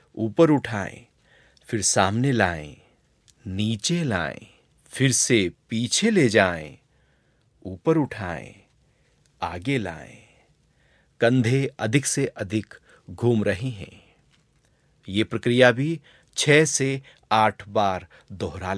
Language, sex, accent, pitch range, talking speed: Hindi, male, native, 100-140 Hz, 100 wpm